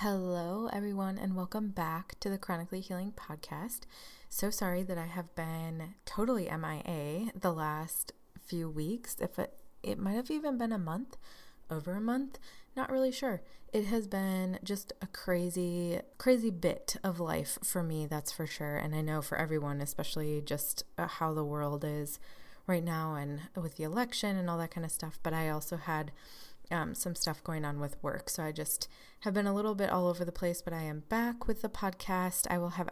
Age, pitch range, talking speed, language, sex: 20-39, 160-195 Hz, 195 wpm, English, female